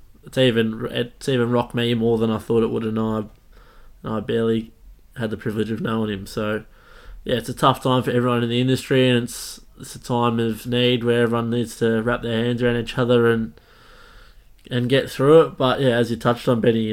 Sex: male